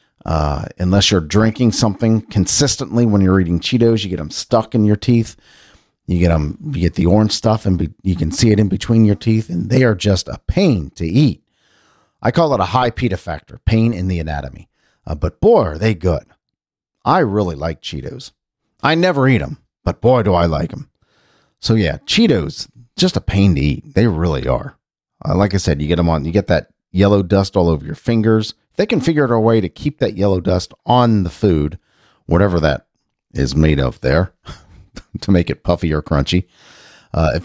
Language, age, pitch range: English, 40-59, 85-115 Hz